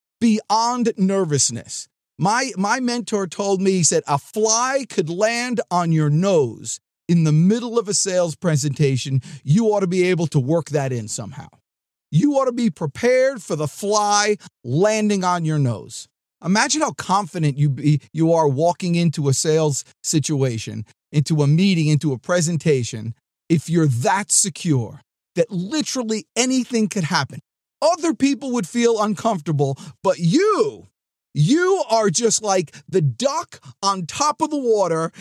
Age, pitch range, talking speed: 40-59, 155-225 Hz, 150 wpm